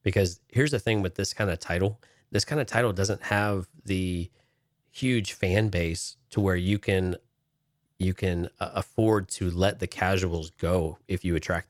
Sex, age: male, 30-49